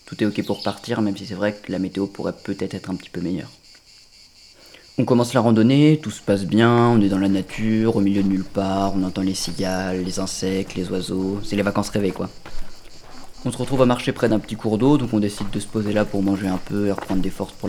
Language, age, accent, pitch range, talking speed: French, 20-39, French, 95-110 Hz, 260 wpm